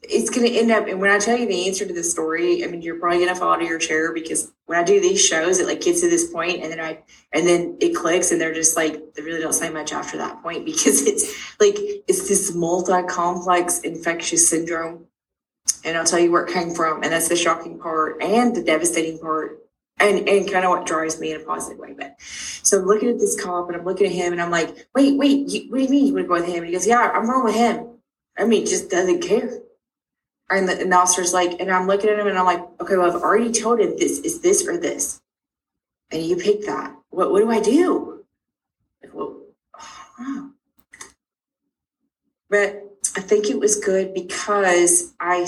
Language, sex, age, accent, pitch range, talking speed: English, female, 20-39, American, 175-265 Hz, 235 wpm